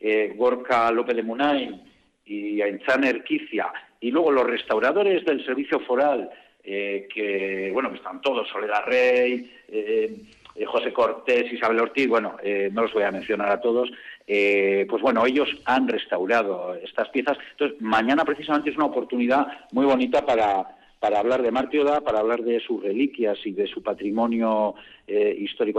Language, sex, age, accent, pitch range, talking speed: Spanish, male, 50-69, Spanish, 115-160 Hz, 160 wpm